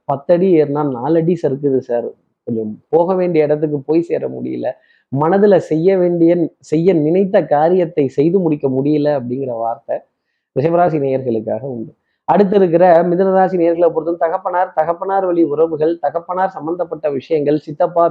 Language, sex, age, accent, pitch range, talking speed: Tamil, male, 20-39, native, 140-175 Hz, 130 wpm